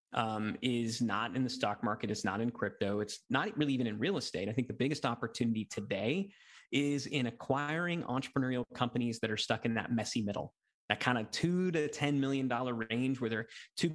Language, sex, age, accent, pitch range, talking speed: English, male, 30-49, American, 120-150 Hz, 200 wpm